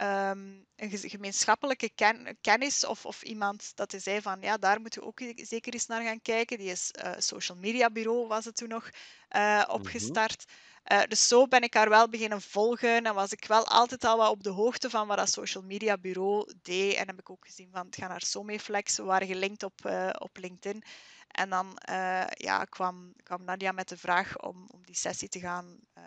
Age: 20-39